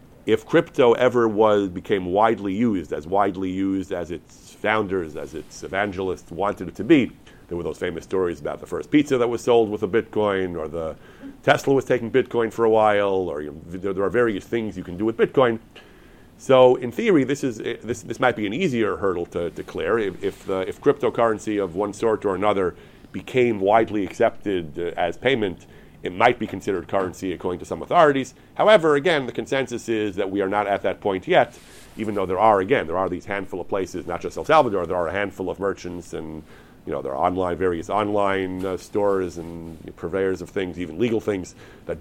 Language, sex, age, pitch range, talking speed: English, male, 40-59, 95-120 Hz, 210 wpm